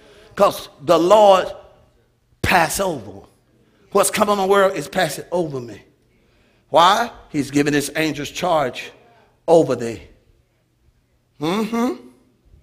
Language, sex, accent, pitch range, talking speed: English, male, American, 130-190 Hz, 110 wpm